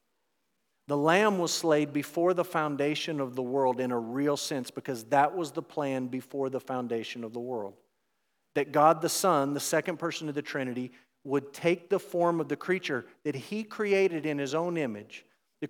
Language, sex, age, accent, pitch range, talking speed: English, male, 50-69, American, 135-175 Hz, 190 wpm